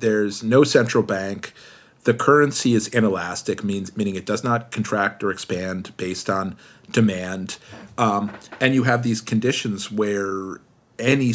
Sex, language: male, English